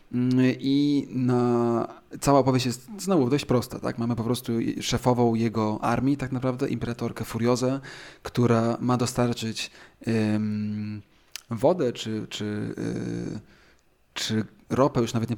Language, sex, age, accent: Polish, male, 20-39, native